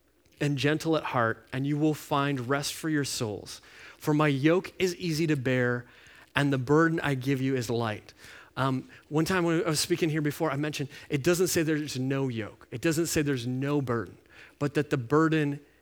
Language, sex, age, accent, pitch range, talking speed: English, male, 30-49, American, 140-175 Hz, 220 wpm